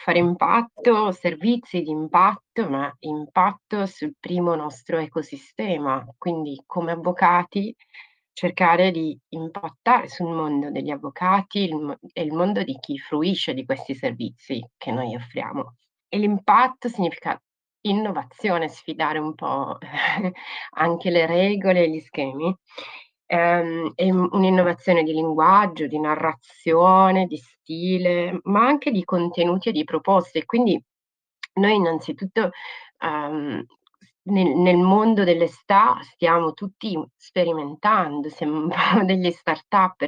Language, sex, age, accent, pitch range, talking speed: Italian, female, 30-49, native, 155-185 Hz, 110 wpm